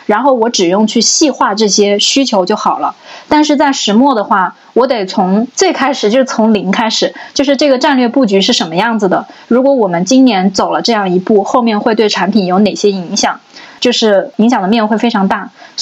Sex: female